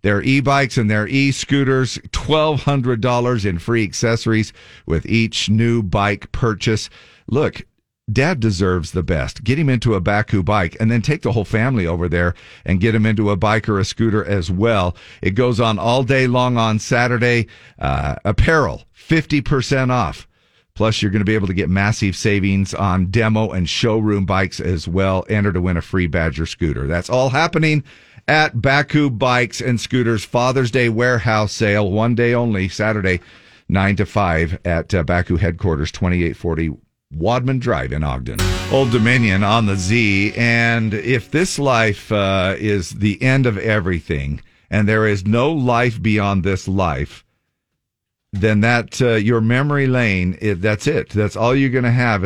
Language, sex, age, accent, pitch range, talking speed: English, male, 50-69, American, 95-120 Hz, 165 wpm